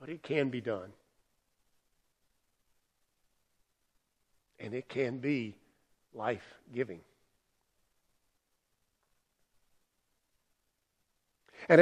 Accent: American